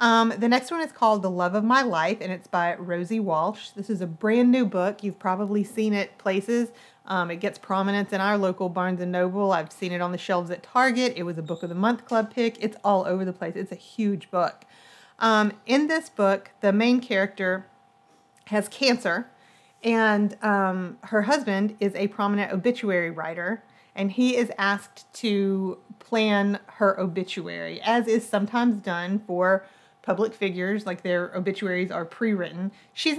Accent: American